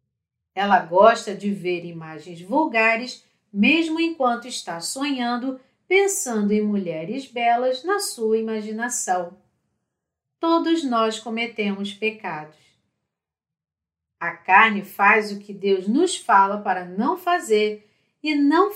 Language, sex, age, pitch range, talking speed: Portuguese, female, 40-59, 195-265 Hz, 110 wpm